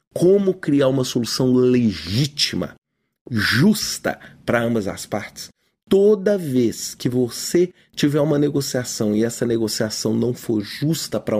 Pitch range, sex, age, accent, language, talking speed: 125-185 Hz, male, 40-59, Brazilian, Portuguese, 125 wpm